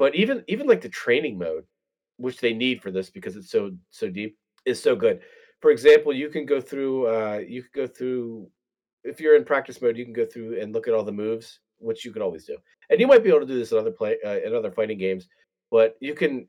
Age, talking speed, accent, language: 30-49, 255 wpm, American, English